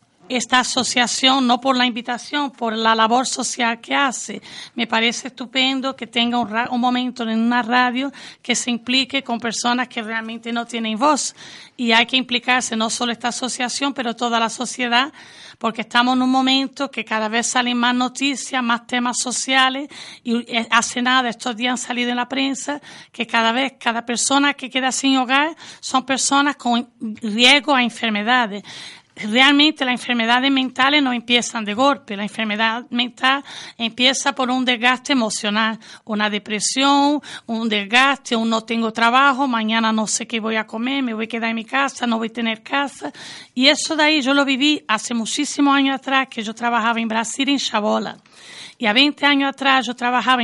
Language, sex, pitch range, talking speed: Spanish, female, 230-265 Hz, 180 wpm